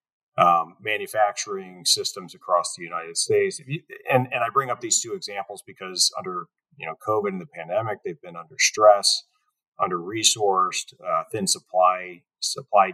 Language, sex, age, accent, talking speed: English, male, 40-59, American, 160 wpm